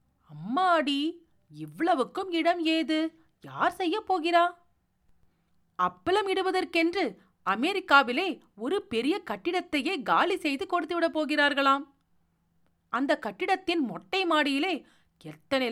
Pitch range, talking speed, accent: 235-335 Hz, 50 wpm, native